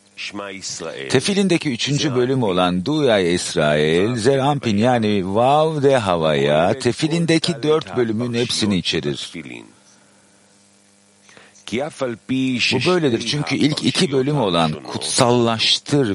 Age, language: 50-69, Turkish